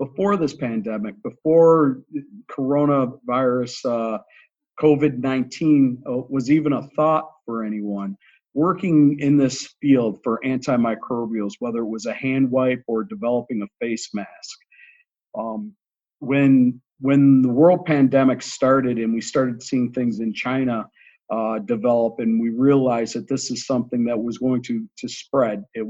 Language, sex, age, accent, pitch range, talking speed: English, male, 50-69, American, 120-160 Hz, 140 wpm